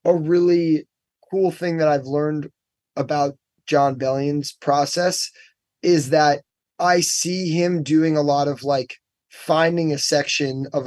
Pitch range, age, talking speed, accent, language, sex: 135-165 Hz, 20-39, 140 wpm, American, English, male